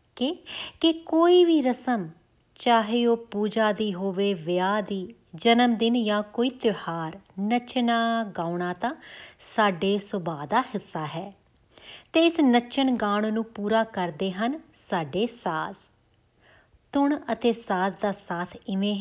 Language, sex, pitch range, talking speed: Punjabi, female, 190-245 Hz, 130 wpm